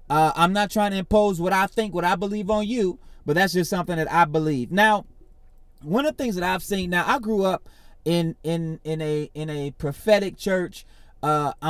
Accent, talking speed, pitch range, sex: American, 215 wpm, 150-185 Hz, male